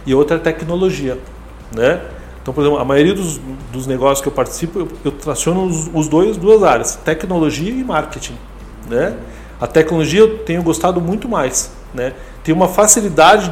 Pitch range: 160-215 Hz